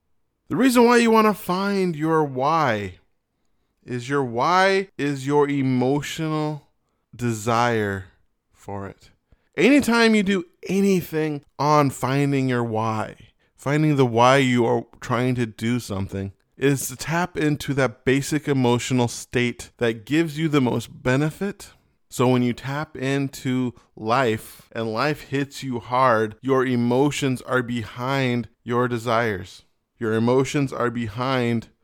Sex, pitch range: male, 115-145 Hz